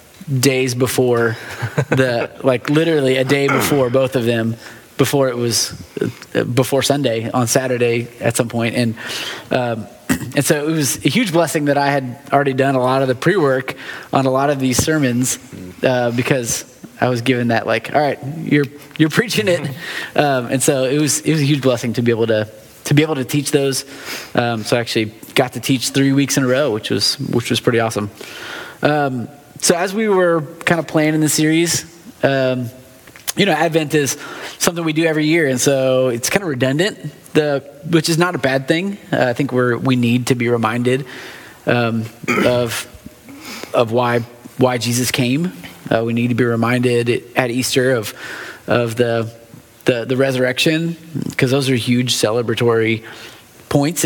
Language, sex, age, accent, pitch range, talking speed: English, male, 20-39, American, 120-145 Hz, 185 wpm